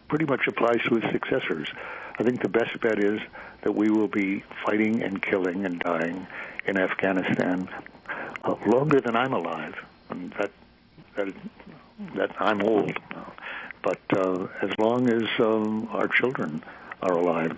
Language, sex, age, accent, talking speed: English, male, 60-79, American, 150 wpm